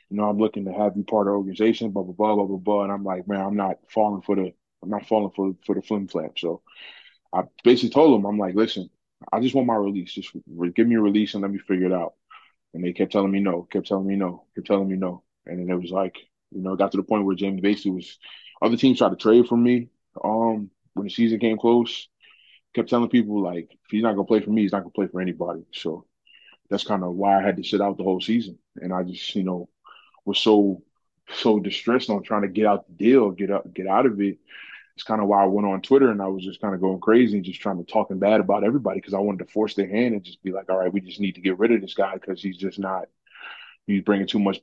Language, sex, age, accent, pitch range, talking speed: English, male, 20-39, American, 95-110 Hz, 275 wpm